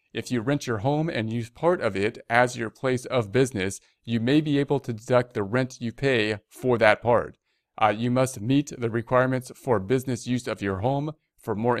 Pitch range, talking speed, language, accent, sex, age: 105-125 Hz, 215 wpm, English, American, male, 40-59